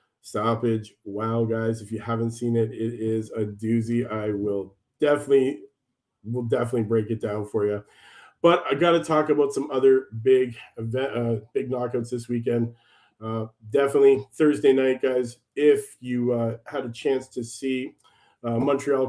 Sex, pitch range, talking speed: male, 115-140 Hz, 160 wpm